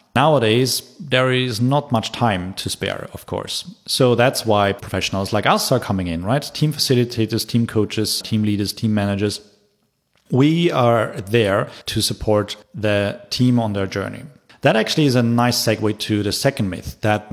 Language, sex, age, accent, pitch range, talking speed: English, male, 40-59, German, 100-125 Hz, 170 wpm